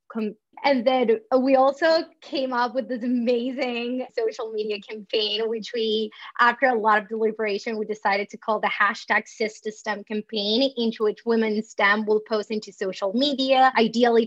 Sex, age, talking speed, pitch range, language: female, 20-39, 160 wpm, 210-230 Hz, English